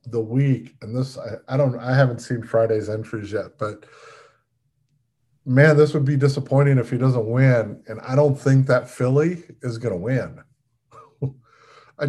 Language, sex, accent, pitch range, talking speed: English, male, American, 115-135 Hz, 170 wpm